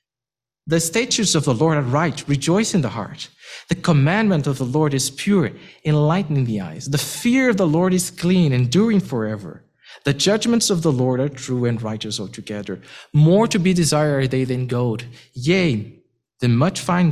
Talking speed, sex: 180 wpm, male